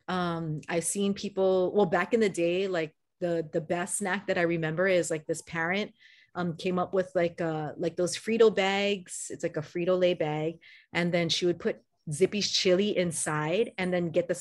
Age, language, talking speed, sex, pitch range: 30-49, English, 200 wpm, female, 165-195 Hz